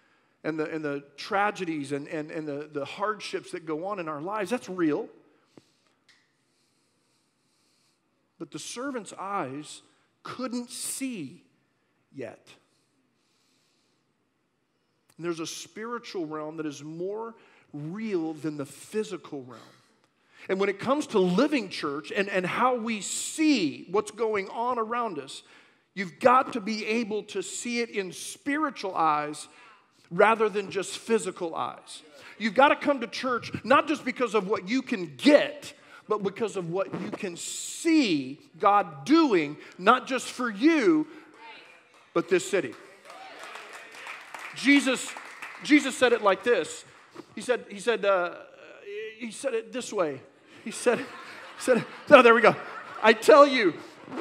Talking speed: 140 wpm